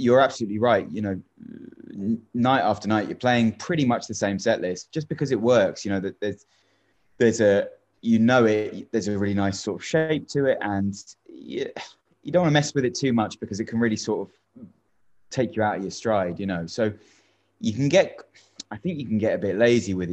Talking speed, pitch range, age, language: 225 wpm, 95-125 Hz, 20-39, English